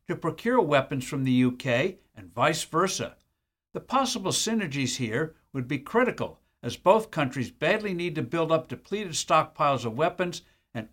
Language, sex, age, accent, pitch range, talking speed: English, male, 60-79, American, 130-175 Hz, 160 wpm